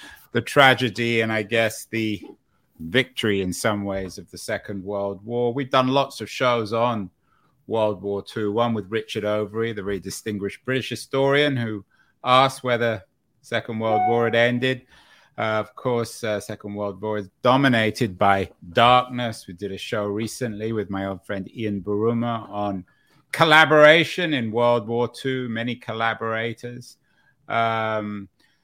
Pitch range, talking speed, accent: 105-125 Hz, 155 wpm, British